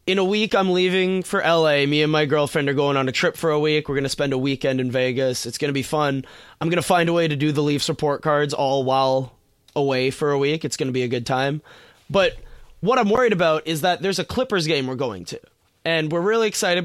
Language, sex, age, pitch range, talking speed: English, male, 20-39, 140-180 Hz, 265 wpm